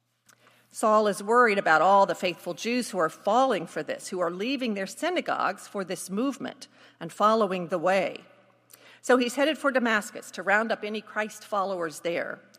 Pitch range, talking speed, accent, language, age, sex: 195-260 Hz, 175 wpm, American, English, 50-69, female